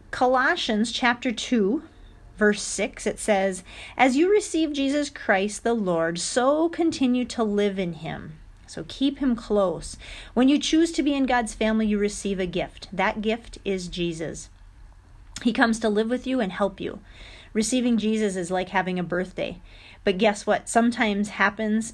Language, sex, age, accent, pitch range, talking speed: English, female, 40-59, American, 180-235 Hz, 165 wpm